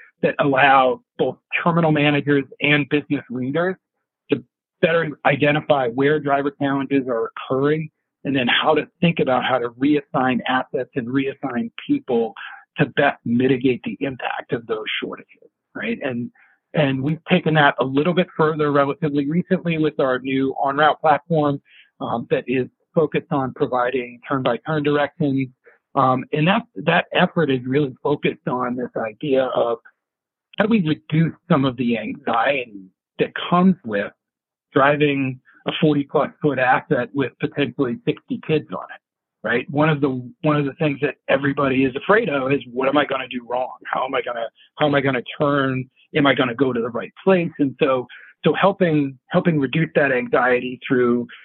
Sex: male